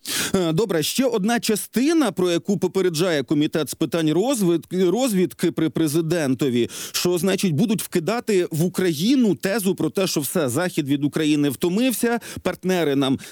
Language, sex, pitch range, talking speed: Ukrainian, male, 155-200 Hz, 135 wpm